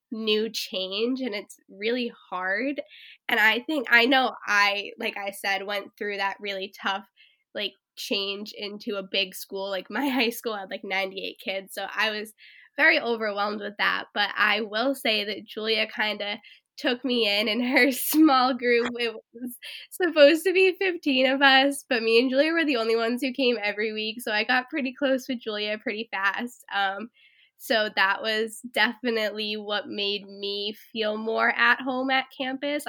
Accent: American